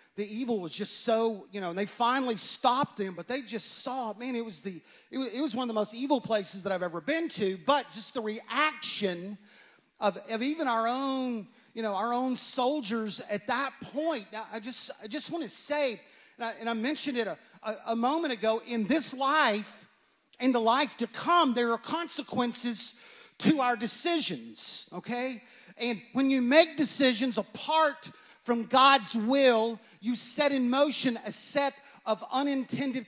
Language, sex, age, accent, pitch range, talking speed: English, male, 40-59, American, 220-265 Hz, 185 wpm